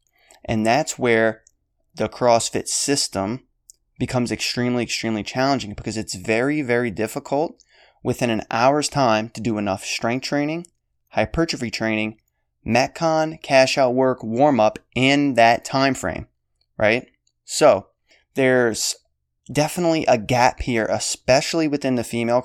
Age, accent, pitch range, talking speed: 20-39, American, 110-135 Hz, 125 wpm